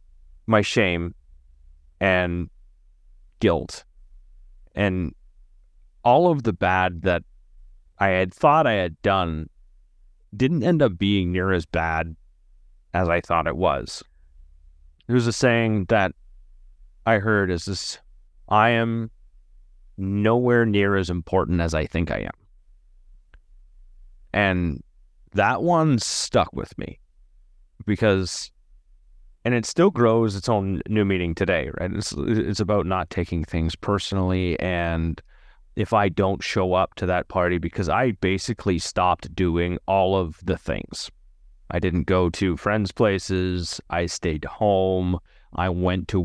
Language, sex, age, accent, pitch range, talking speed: English, male, 30-49, American, 80-100 Hz, 130 wpm